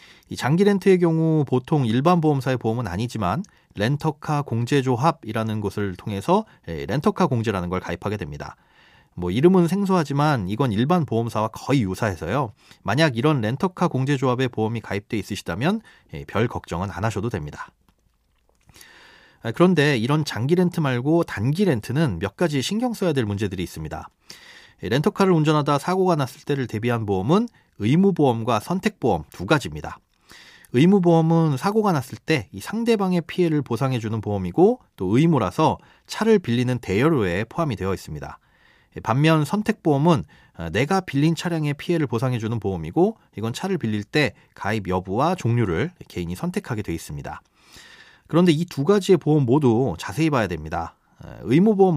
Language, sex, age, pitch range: Korean, male, 30-49, 110-170 Hz